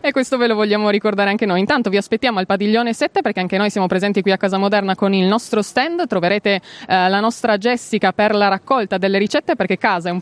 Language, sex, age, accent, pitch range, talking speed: Italian, female, 20-39, native, 195-240 Hz, 240 wpm